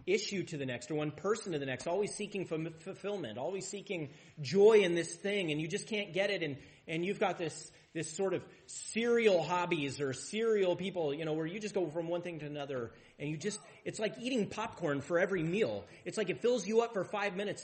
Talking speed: 235 wpm